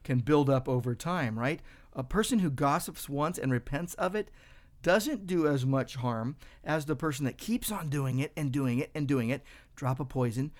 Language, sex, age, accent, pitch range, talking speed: English, male, 50-69, American, 125-165 Hz, 210 wpm